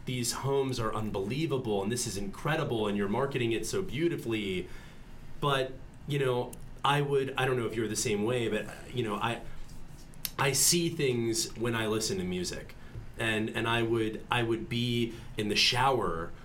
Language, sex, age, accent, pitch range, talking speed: English, male, 30-49, American, 100-130 Hz, 180 wpm